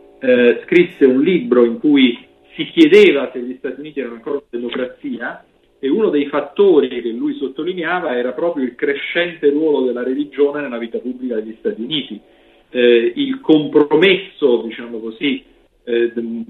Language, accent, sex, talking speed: Italian, native, male, 155 wpm